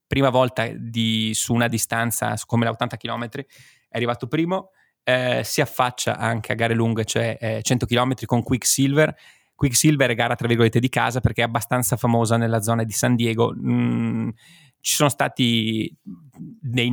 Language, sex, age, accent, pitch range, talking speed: Italian, male, 20-39, native, 115-130 Hz, 165 wpm